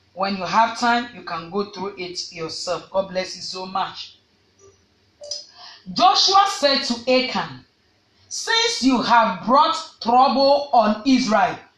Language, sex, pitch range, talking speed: English, female, 215-315 Hz, 135 wpm